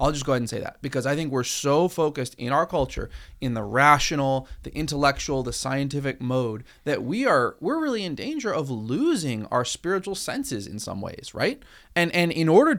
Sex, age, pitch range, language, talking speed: male, 30-49, 135-195 Hz, English, 205 wpm